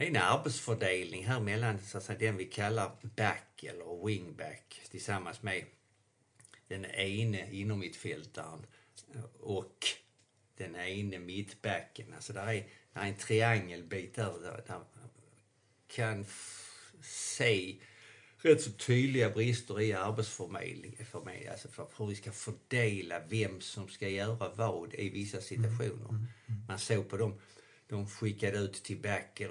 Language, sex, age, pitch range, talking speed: Swedish, male, 50-69, 105-120 Hz, 135 wpm